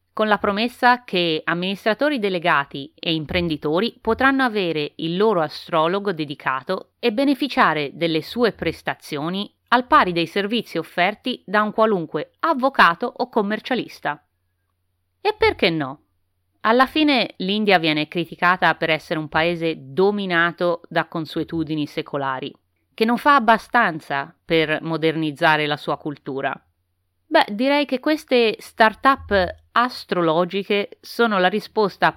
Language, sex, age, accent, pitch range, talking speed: Italian, female, 30-49, native, 150-215 Hz, 120 wpm